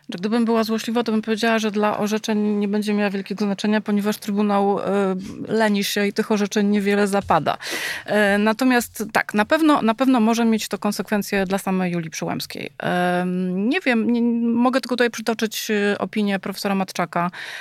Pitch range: 175-225 Hz